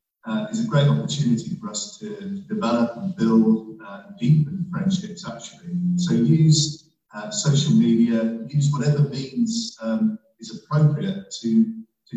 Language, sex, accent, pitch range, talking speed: English, male, British, 145-205 Hz, 140 wpm